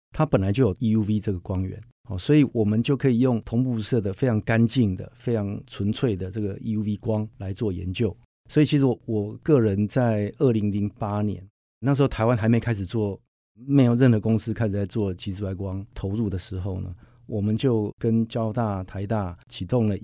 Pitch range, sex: 100-120 Hz, male